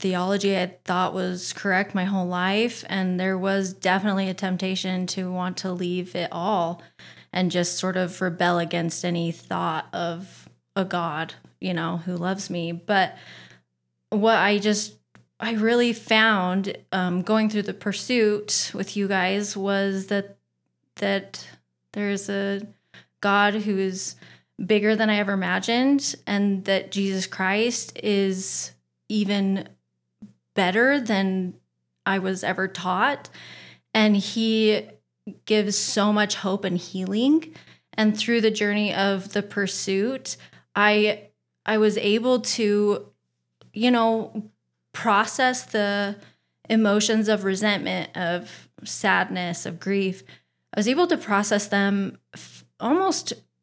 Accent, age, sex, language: American, 20-39, female, English